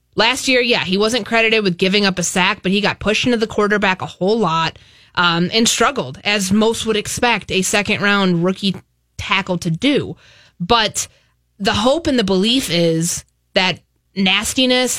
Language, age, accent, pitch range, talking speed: English, 20-39, American, 175-230 Hz, 170 wpm